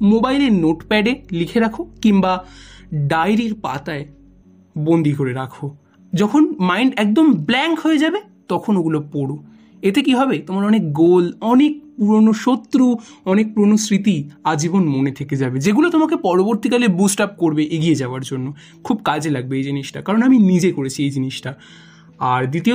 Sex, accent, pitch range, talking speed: male, native, 150-225 Hz, 120 wpm